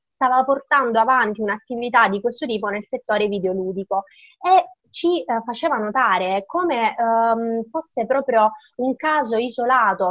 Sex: female